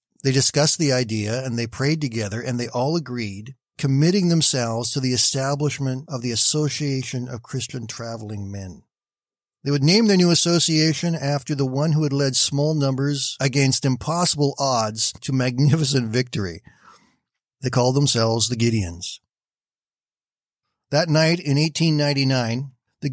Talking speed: 140 wpm